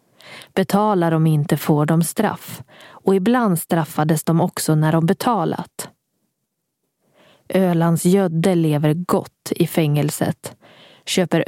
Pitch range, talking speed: 165-195 Hz, 110 wpm